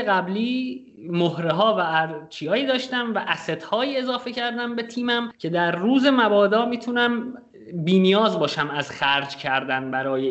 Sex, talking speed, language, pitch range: male, 140 wpm, Persian, 155-225 Hz